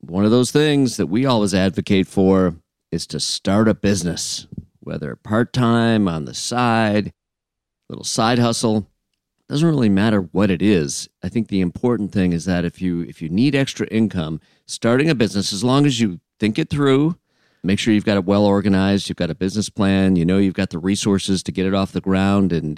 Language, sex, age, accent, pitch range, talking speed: English, male, 40-59, American, 90-110 Hz, 210 wpm